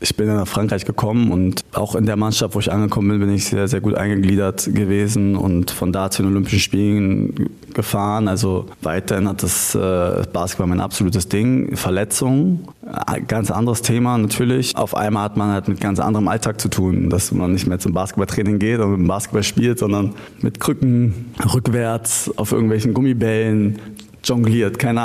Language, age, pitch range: German, 20-39, 100-120 Hz